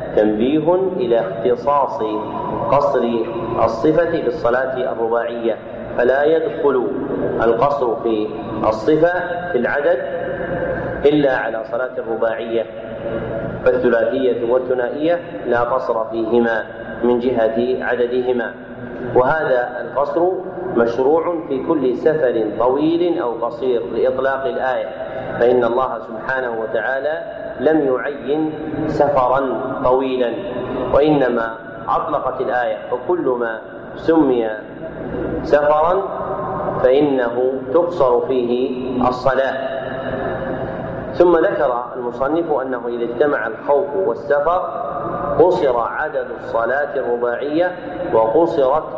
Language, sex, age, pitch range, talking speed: Arabic, male, 40-59, 115-155 Hz, 85 wpm